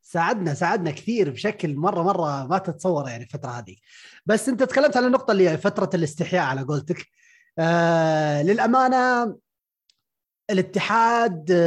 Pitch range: 150-205 Hz